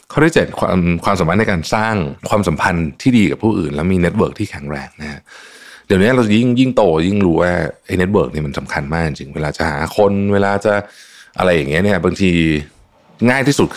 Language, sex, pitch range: Thai, male, 75-95 Hz